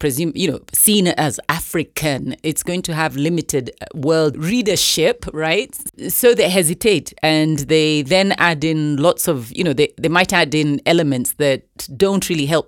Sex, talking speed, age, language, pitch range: female, 170 wpm, 30-49, English, 135-165 Hz